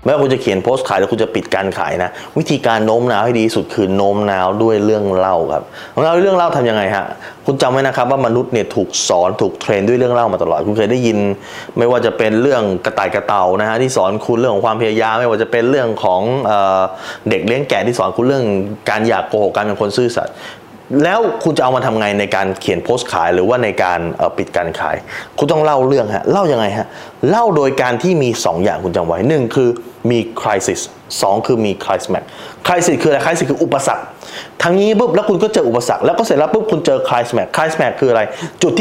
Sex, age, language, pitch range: male, 20-39, Thai, 115-185 Hz